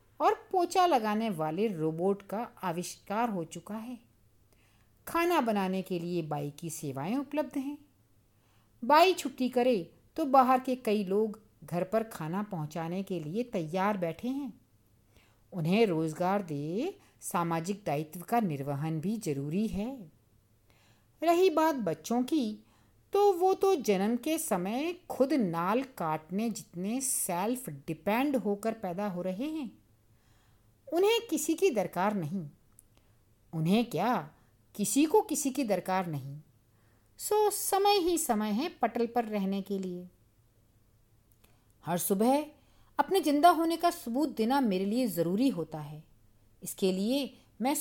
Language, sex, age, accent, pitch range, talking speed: Hindi, female, 50-69, native, 160-260 Hz, 135 wpm